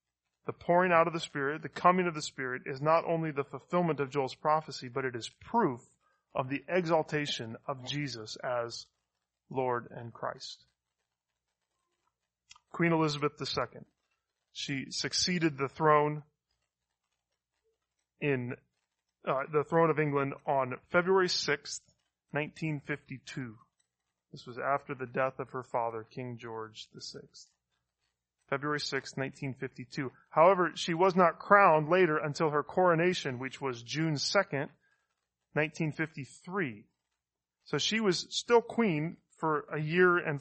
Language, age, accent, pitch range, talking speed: English, 30-49, American, 125-160 Hz, 130 wpm